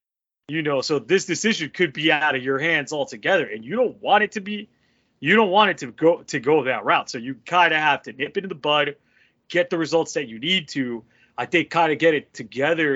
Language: English